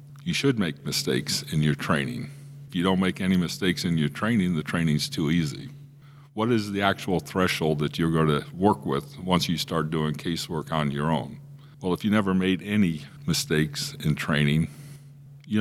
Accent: American